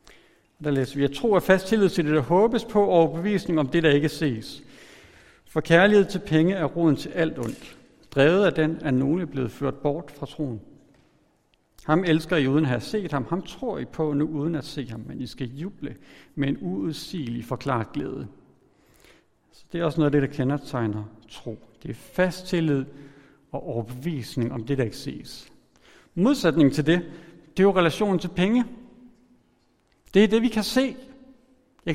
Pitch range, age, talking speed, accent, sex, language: 140-185 Hz, 60-79, 195 wpm, native, male, Danish